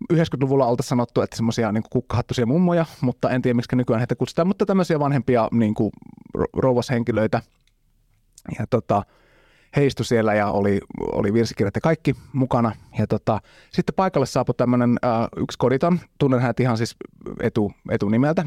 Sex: male